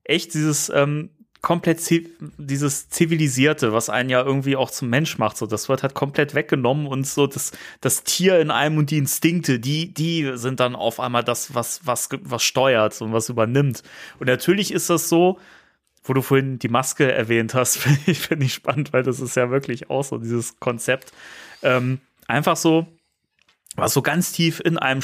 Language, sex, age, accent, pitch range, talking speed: German, male, 30-49, German, 120-150 Hz, 185 wpm